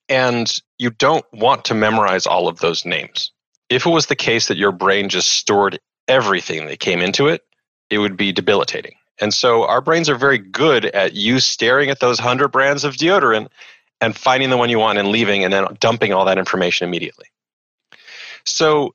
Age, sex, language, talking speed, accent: 30-49, male, English, 195 wpm, American